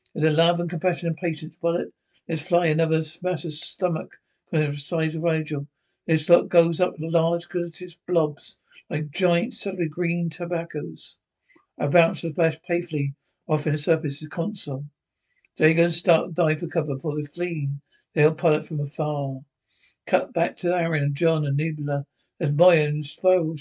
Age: 60-79